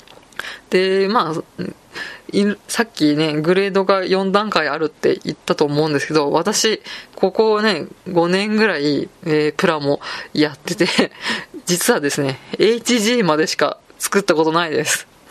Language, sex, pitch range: Japanese, female, 155-200 Hz